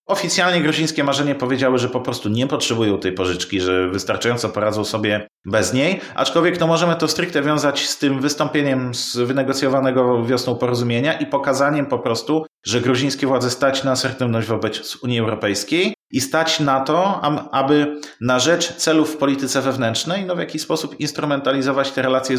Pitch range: 115-145 Hz